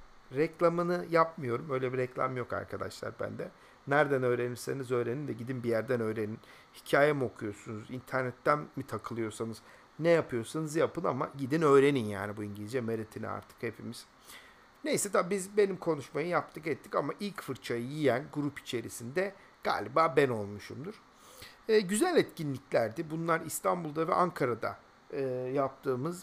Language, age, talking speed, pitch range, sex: Turkish, 50-69, 135 wpm, 125-170 Hz, male